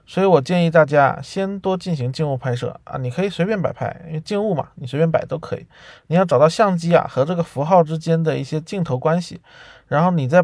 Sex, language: male, Chinese